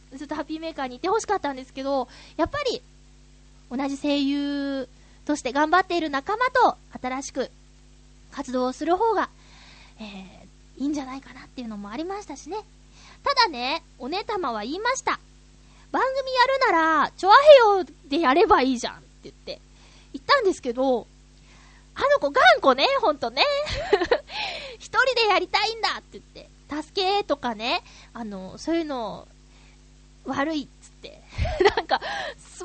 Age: 20-39